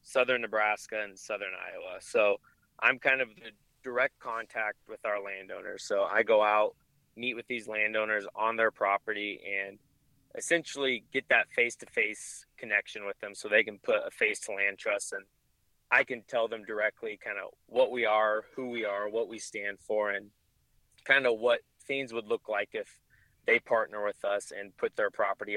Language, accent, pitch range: English, American, 105-135 Hz